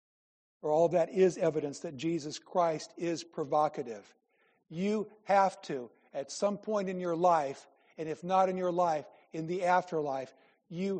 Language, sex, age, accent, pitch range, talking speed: English, male, 60-79, American, 155-185 Hz, 160 wpm